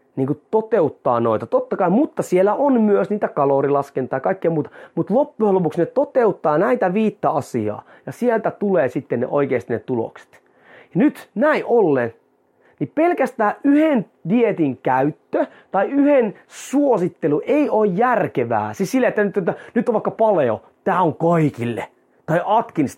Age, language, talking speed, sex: 30-49, Finnish, 150 wpm, male